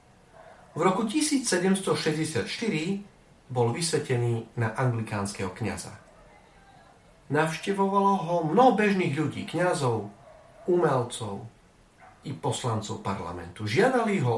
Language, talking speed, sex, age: Slovak, 85 wpm, male, 40-59